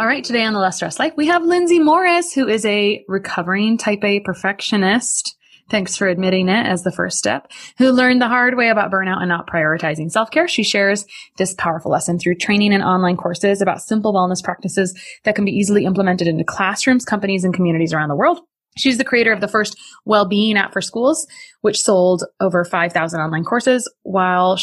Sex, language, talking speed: female, English, 200 wpm